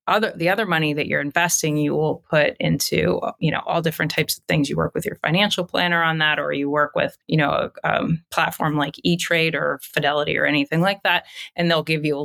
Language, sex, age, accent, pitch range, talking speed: English, female, 30-49, American, 150-180 Hz, 235 wpm